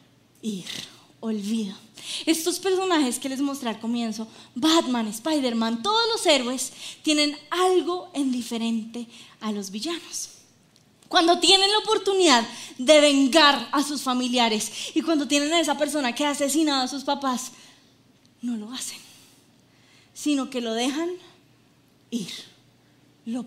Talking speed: 130 wpm